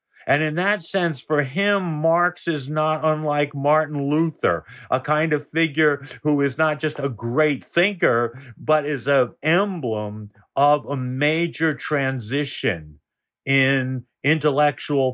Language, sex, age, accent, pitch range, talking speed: English, male, 50-69, American, 125-155 Hz, 130 wpm